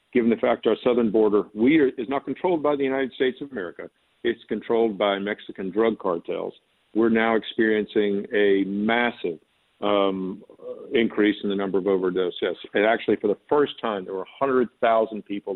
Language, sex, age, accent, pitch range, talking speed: English, male, 50-69, American, 100-130 Hz, 175 wpm